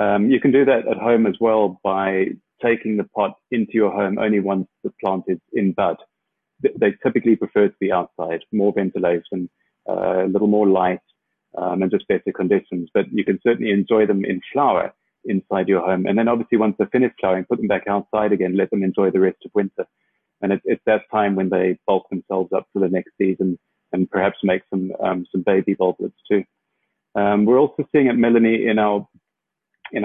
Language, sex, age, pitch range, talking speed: English, male, 30-49, 95-110 Hz, 205 wpm